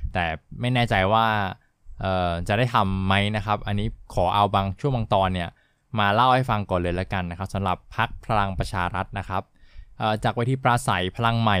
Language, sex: Thai, male